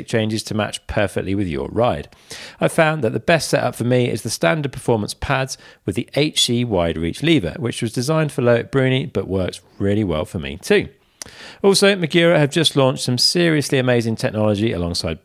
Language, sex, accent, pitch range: English, male, British, 110-160 Hz